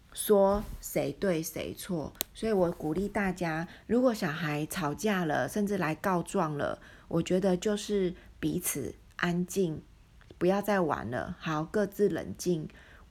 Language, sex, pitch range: Chinese, female, 165-200 Hz